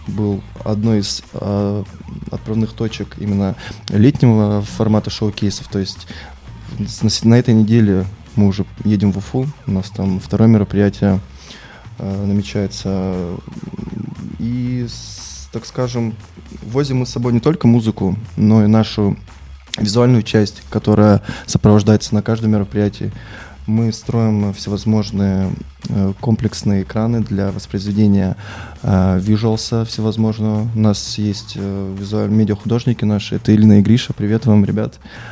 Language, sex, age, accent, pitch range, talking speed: Russian, male, 20-39, native, 100-110 Hz, 115 wpm